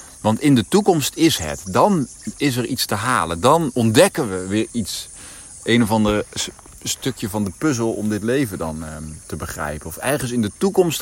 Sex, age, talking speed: male, 50-69, 190 wpm